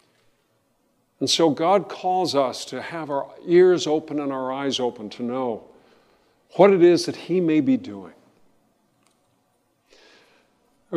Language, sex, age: English, male, 50-69